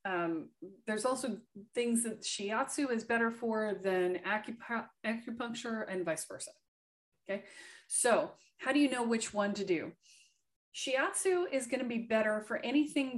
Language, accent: English, American